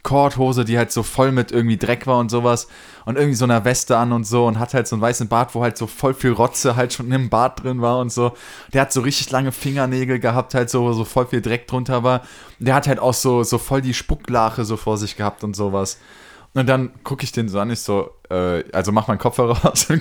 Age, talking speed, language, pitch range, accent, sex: 20-39, 265 wpm, German, 105-130 Hz, German, male